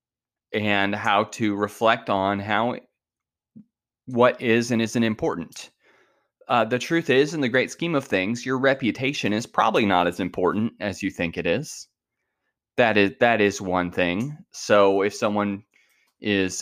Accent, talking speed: American, 155 wpm